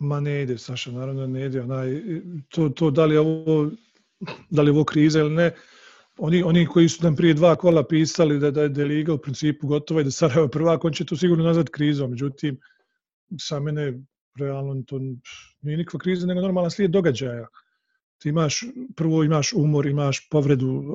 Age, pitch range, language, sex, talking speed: 40-59, 135-170 Hz, English, male, 185 wpm